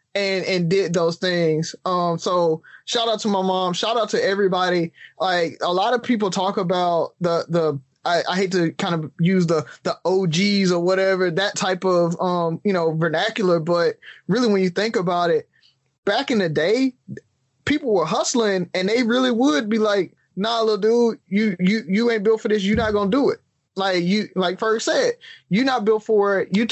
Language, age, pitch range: English, 20-39, 180-220 Hz